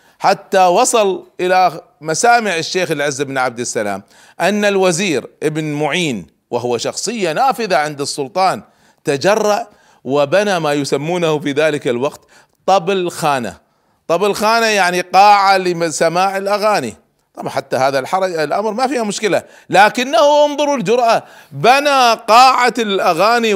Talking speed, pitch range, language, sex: 115 wpm, 155-220 Hz, Arabic, male